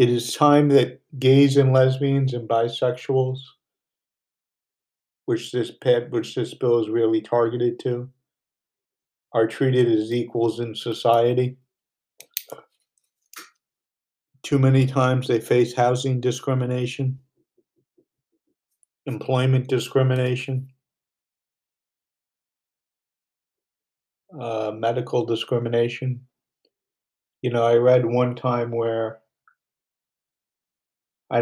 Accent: American